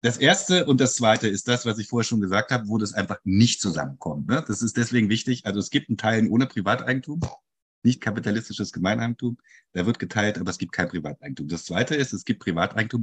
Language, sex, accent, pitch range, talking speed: English, male, German, 100-120 Hz, 215 wpm